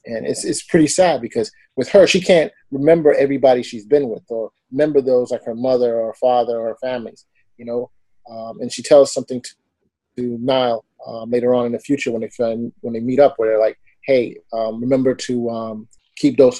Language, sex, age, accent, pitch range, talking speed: English, male, 30-49, American, 115-140 Hz, 215 wpm